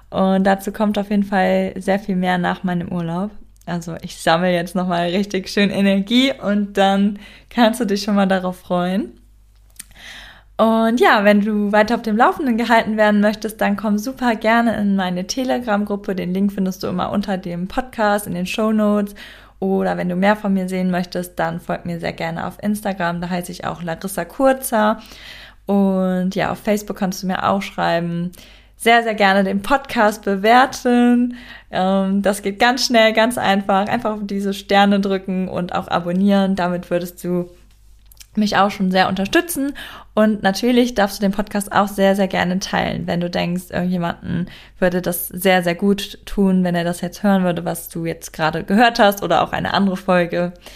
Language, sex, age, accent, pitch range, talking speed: German, female, 20-39, German, 180-215 Hz, 185 wpm